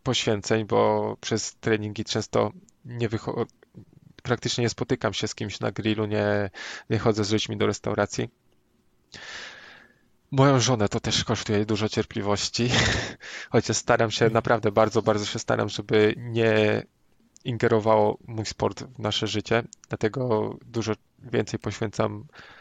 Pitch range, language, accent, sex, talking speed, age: 110-120 Hz, Polish, native, male, 130 wpm, 20-39